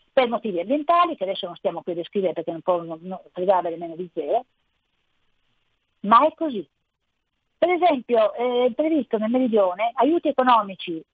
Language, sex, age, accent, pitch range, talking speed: Italian, female, 40-59, native, 190-260 Hz, 165 wpm